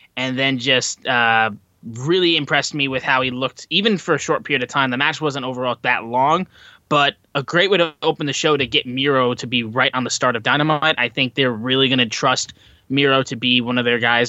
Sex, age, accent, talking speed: male, 20-39, American, 240 wpm